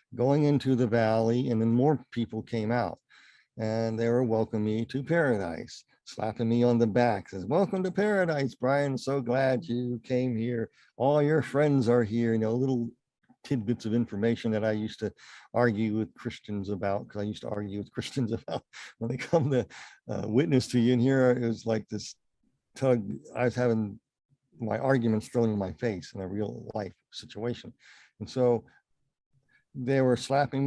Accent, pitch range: American, 105-125 Hz